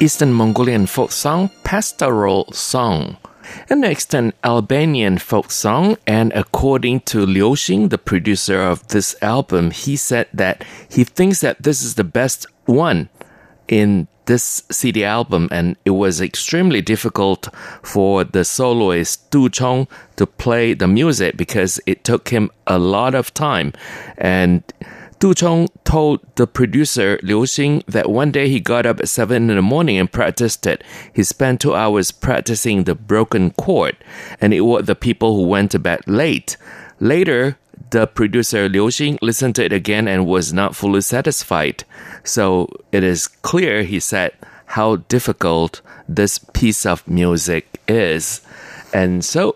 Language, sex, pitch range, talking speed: English, male, 95-135 Hz, 155 wpm